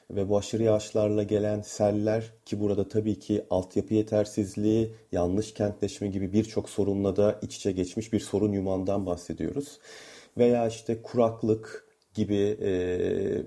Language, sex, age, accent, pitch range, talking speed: Turkish, male, 40-59, native, 100-125 Hz, 135 wpm